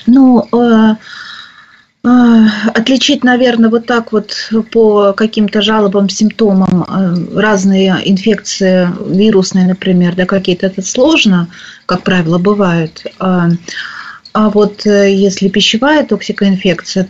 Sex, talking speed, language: female, 90 wpm, Russian